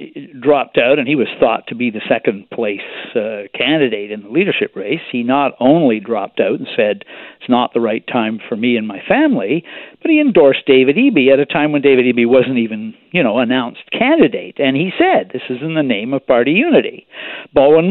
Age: 60-79